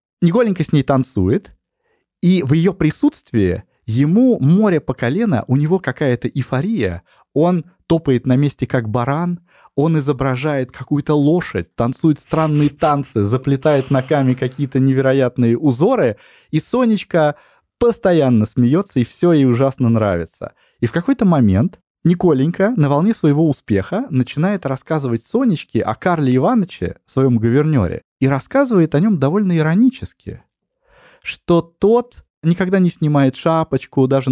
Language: Russian